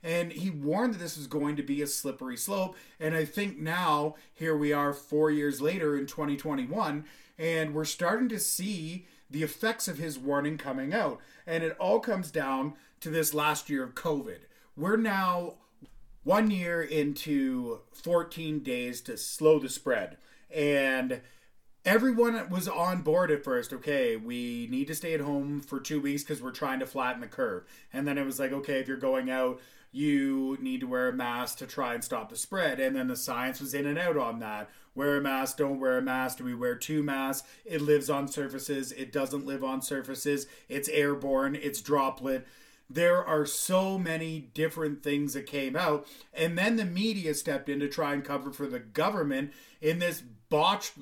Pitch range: 140-175 Hz